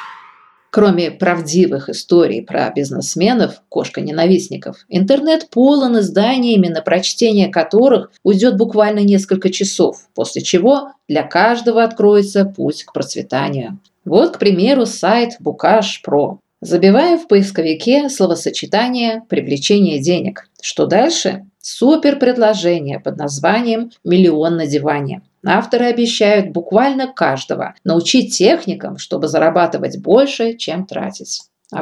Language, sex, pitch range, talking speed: English, female, 165-230 Hz, 105 wpm